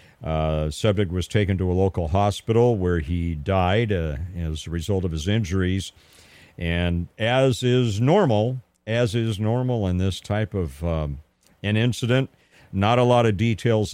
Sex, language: male, English